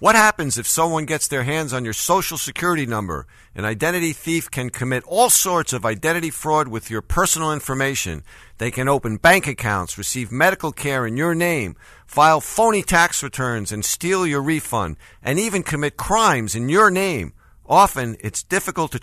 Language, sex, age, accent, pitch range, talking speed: English, male, 50-69, American, 125-175 Hz, 175 wpm